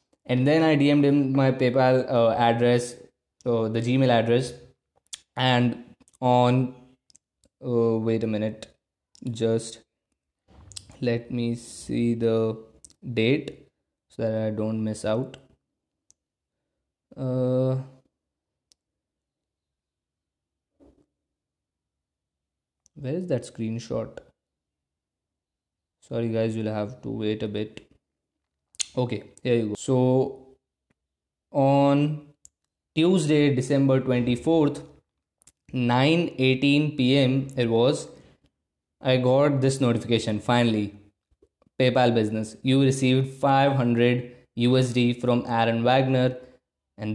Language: Hindi